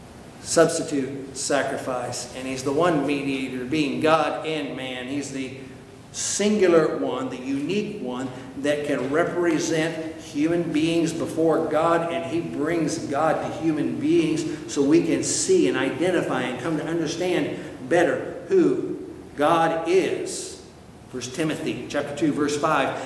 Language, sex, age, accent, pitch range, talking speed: English, male, 50-69, American, 135-180 Hz, 135 wpm